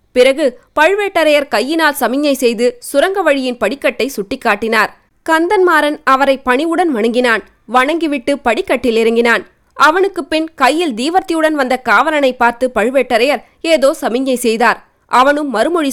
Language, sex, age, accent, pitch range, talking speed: Tamil, female, 20-39, native, 230-295 Hz, 110 wpm